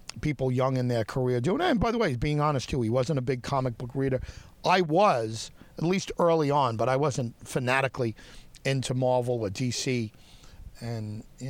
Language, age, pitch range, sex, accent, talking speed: English, 50-69, 110-140 Hz, male, American, 190 wpm